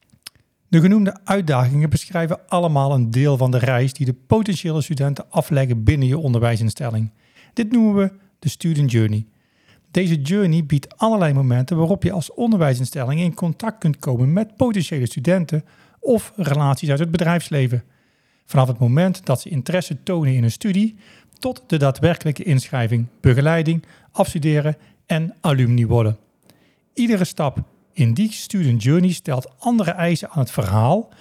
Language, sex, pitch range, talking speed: Dutch, male, 130-180 Hz, 145 wpm